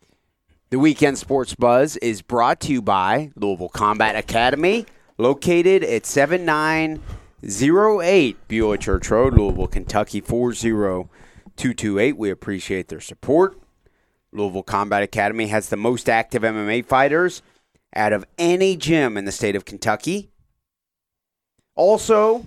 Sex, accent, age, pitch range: male, American, 30-49, 105-150 Hz